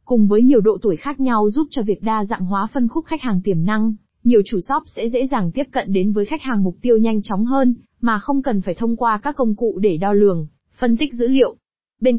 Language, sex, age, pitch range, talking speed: Vietnamese, female, 20-39, 200-250 Hz, 260 wpm